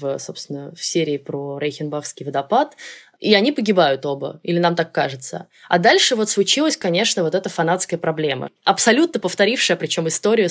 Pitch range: 155-195 Hz